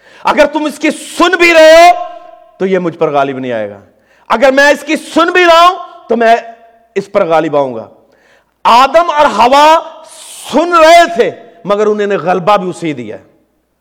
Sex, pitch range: male, 230-310 Hz